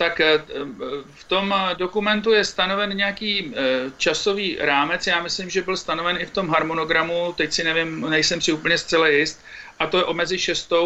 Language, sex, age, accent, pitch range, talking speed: Czech, male, 50-69, native, 155-185 Hz, 175 wpm